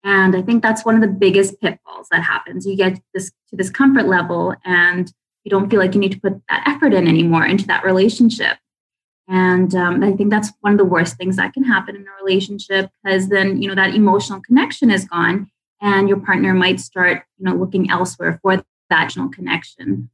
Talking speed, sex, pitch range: 215 wpm, female, 185-220 Hz